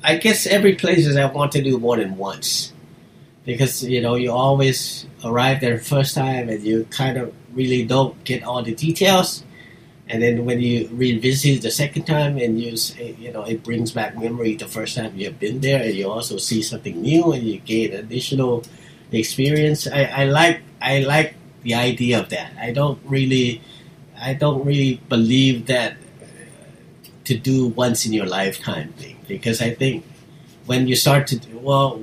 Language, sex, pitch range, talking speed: English, male, 115-140 Hz, 185 wpm